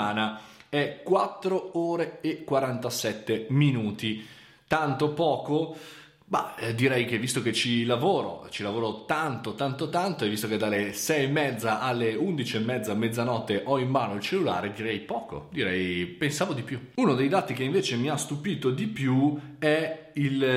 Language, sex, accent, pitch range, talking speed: Italian, male, native, 110-150 Hz, 160 wpm